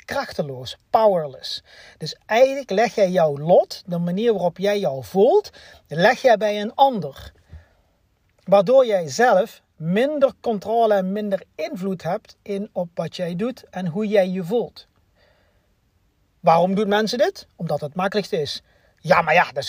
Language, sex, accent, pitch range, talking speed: Dutch, male, Dutch, 160-210 Hz, 155 wpm